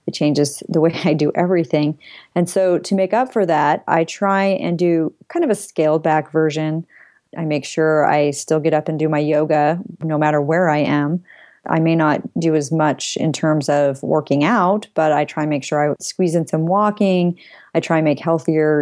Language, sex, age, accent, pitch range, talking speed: English, female, 30-49, American, 155-190 Hz, 215 wpm